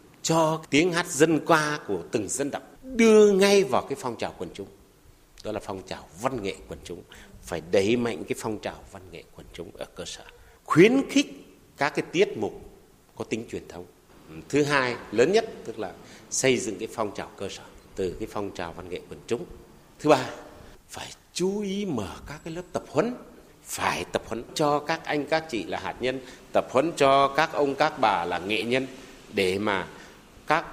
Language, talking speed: Vietnamese, 205 wpm